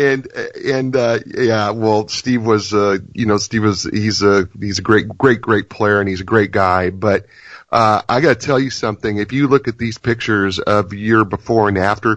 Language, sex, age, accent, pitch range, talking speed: English, male, 40-59, American, 100-120 Hz, 215 wpm